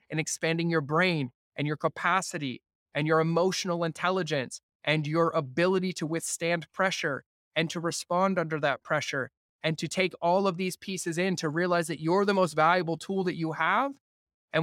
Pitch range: 165-195 Hz